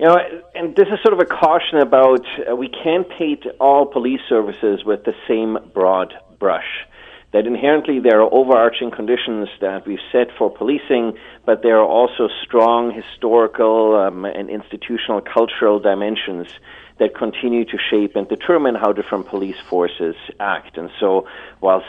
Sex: male